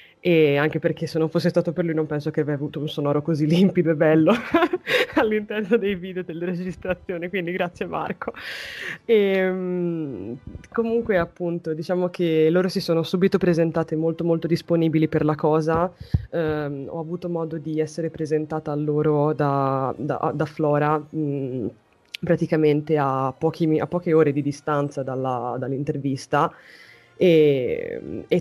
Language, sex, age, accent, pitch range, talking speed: Italian, female, 20-39, native, 145-170 Hz, 150 wpm